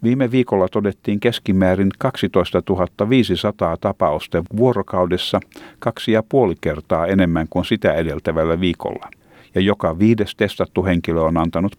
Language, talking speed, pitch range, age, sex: Finnish, 120 wpm, 85-110 Hz, 50-69, male